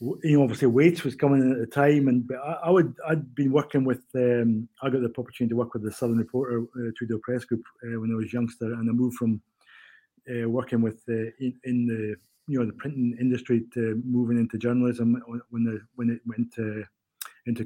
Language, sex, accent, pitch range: English, male, British, 120-135 Hz